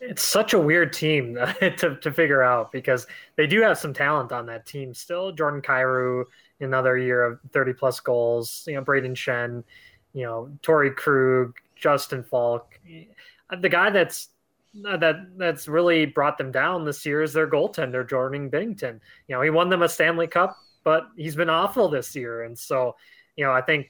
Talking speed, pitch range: 185 wpm, 130-160 Hz